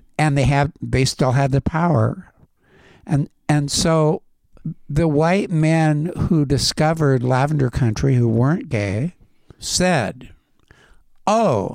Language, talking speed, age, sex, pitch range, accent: English, 115 wpm, 60-79, male, 120-150 Hz, American